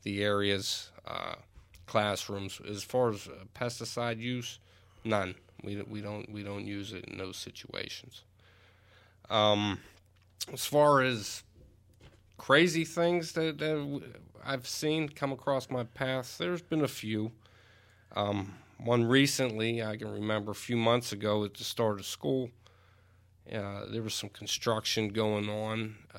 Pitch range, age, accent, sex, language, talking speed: 100-130 Hz, 40-59, American, male, English, 140 wpm